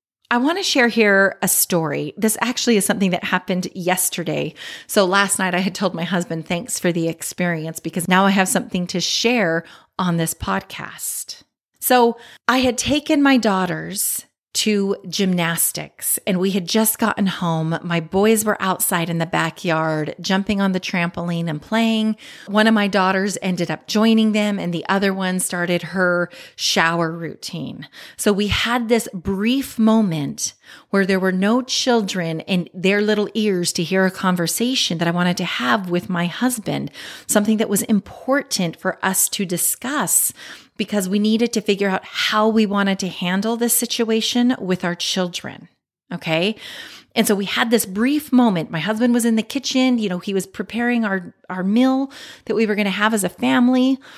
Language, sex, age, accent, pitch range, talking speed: English, female, 30-49, American, 175-225 Hz, 180 wpm